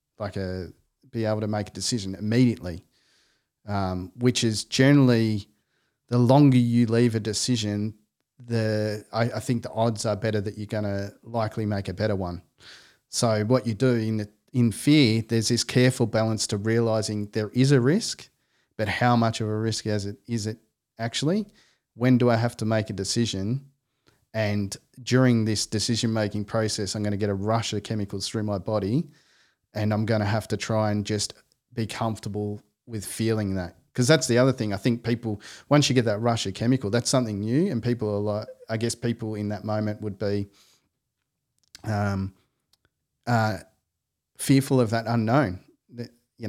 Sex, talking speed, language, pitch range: male, 180 wpm, English, 105-120 Hz